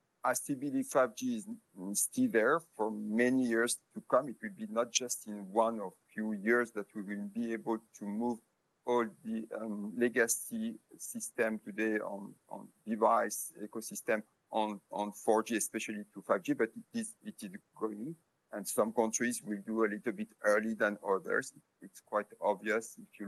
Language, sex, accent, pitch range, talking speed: English, male, French, 110-160 Hz, 170 wpm